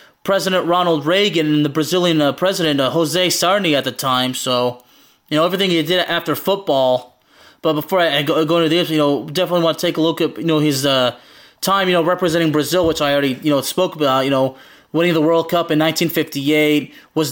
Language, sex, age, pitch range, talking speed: English, male, 20-39, 145-170 Hz, 225 wpm